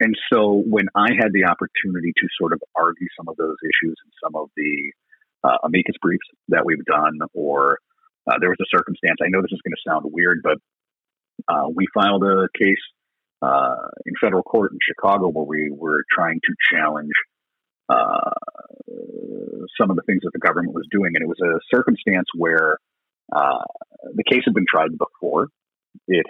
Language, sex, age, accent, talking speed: English, male, 40-59, American, 185 wpm